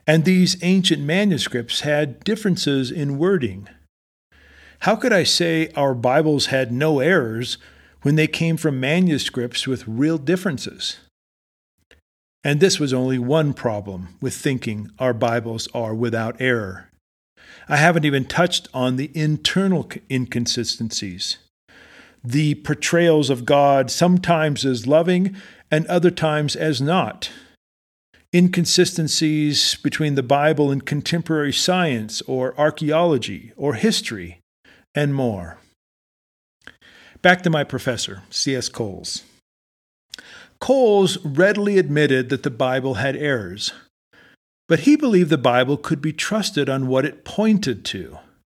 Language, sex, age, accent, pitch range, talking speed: English, male, 50-69, American, 120-165 Hz, 120 wpm